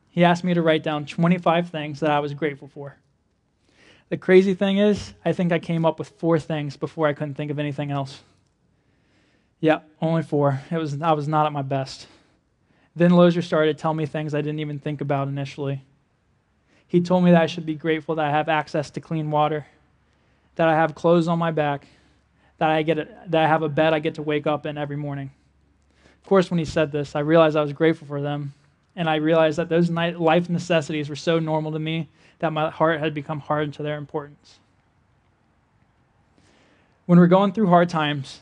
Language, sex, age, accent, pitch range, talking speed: English, male, 20-39, American, 145-170 Hz, 210 wpm